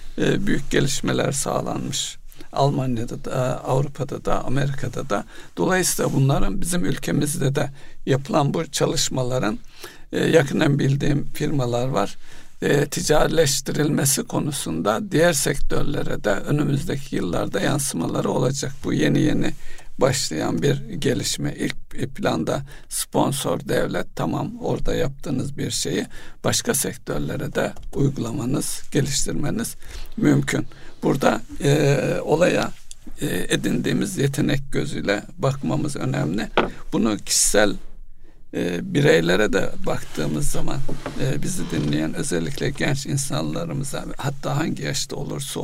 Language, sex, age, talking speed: Turkish, male, 60-79, 105 wpm